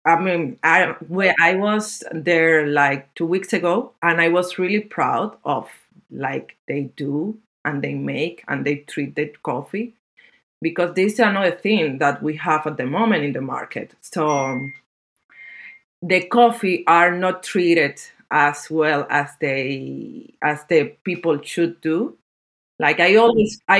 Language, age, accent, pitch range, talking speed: English, 30-49, Spanish, 150-195 Hz, 155 wpm